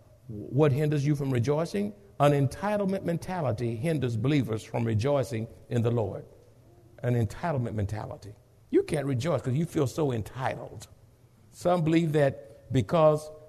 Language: English